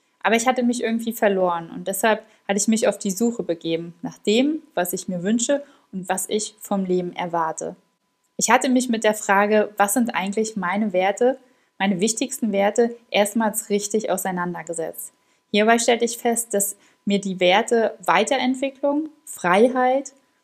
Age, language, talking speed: 20-39, German, 160 wpm